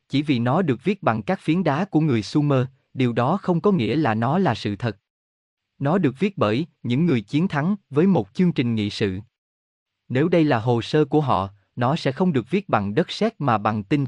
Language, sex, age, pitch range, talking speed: Vietnamese, male, 20-39, 110-155 Hz, 230 wpm